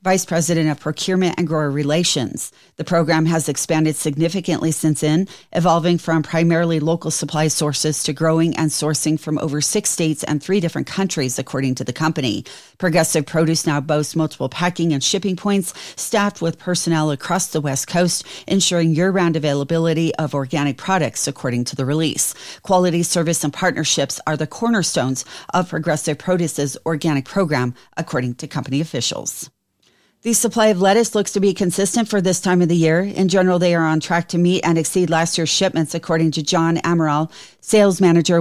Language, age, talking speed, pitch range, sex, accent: English, 40-59, 175 wpm, 150-175 Hz, female, American